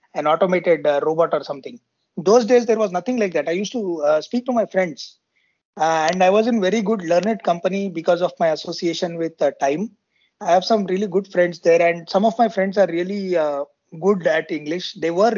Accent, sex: native, male